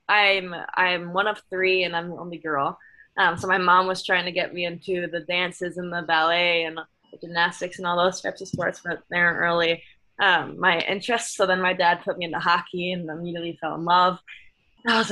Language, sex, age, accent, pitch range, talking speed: English, female, 10-29, American, 170-185 Hz, 220 wpm